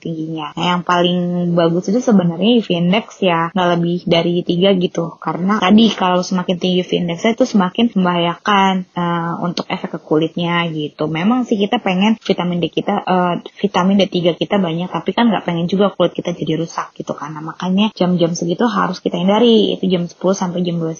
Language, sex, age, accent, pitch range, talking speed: Indonesian, female, 20-39, native, 175-205 Hz, 190 wpm